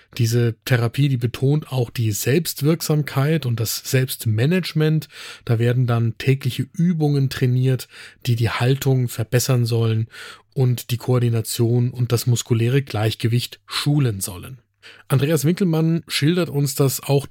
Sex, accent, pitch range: male, German, 120-145 Hz